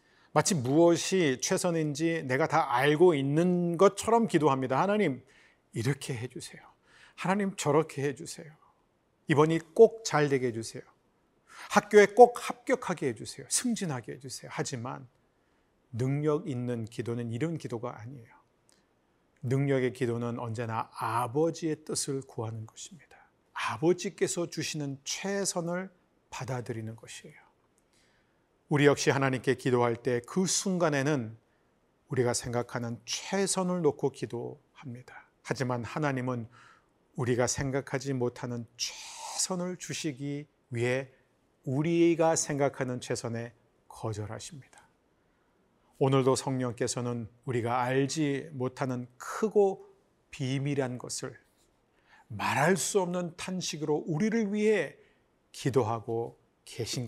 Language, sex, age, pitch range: Korean, male, 40-59, 125-170 Hz